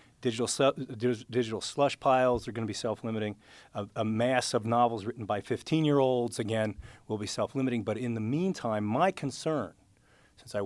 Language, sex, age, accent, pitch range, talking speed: English, male, 40-59, American, 105-130 Hz, 165 wpm